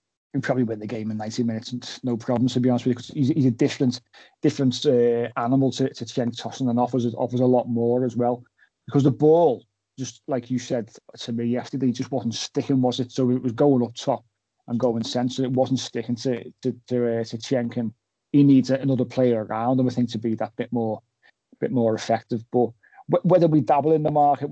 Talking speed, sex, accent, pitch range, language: 230 wpm, male, British, 115-130 Hz, English